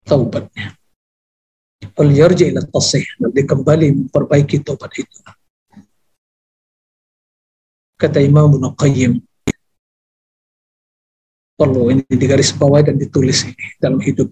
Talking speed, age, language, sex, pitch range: 100 wpm, 50-69, Indonesian, male, 115-185 Hz